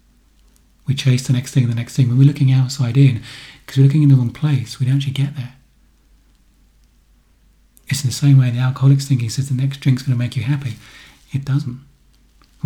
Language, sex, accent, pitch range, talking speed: English, male, British, 110-135 Hz, 220 wpm